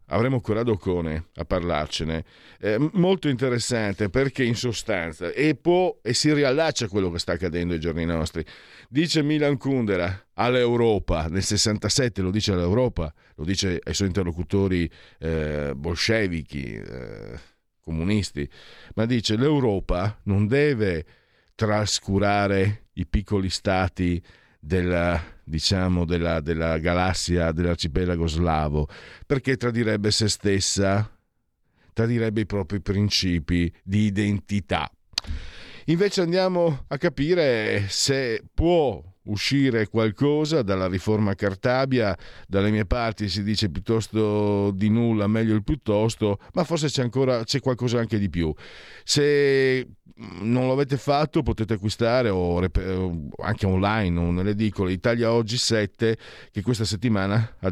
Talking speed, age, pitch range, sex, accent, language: 120 wpm, 50-69, 90-115 Hz, male, native, Italian